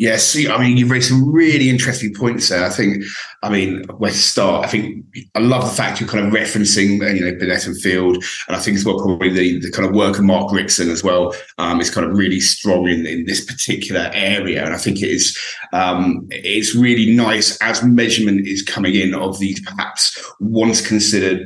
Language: English